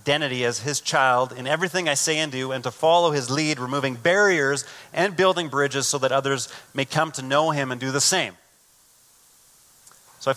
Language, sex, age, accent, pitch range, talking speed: English, male, 30-49, American, 130-165 Hz, 195 wpm